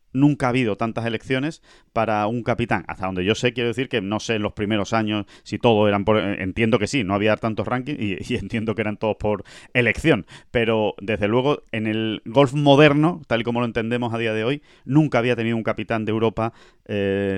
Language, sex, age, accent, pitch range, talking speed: Spanish, male, 30-49, Spanish, 110-135 Hz, 220 wpm